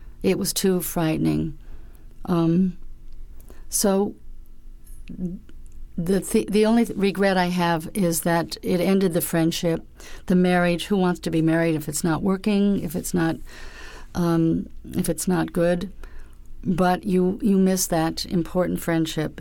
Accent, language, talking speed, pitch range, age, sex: American, English, 140 wpm, 150-185 Hz, 60-79, female